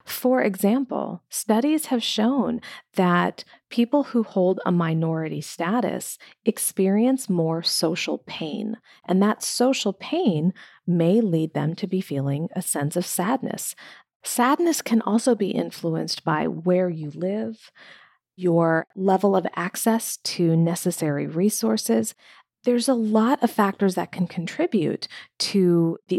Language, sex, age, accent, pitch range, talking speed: English, female, 40-59, American, 170-230 Hz, 130 wpm